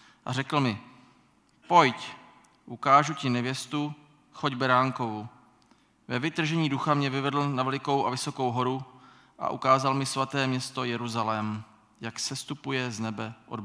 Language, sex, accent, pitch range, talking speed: Czech, male, native, 120-135 Hz, 130 wpm